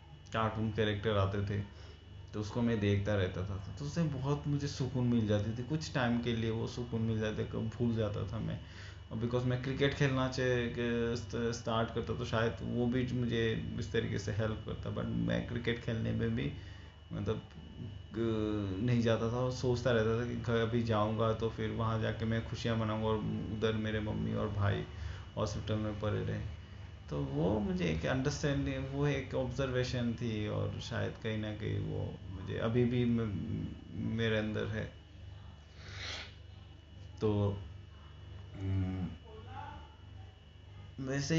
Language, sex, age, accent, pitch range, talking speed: Bengali, male, 20-39, native, 95-120 Hz, 105 wpm